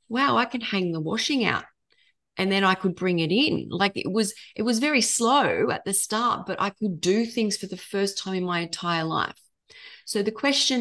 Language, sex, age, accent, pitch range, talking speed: English, female, 30-49, Australian, 175-215 Hz, 220 wpm